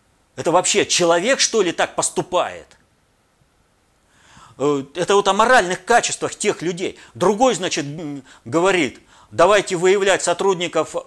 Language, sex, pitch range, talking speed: Russian, male, 150-205 Hz, 110 wpm